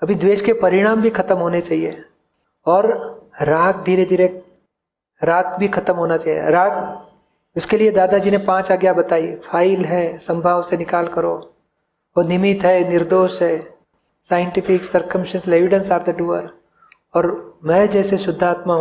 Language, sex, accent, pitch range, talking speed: Hindi, male, native, 170-200 Hz, 150 wpm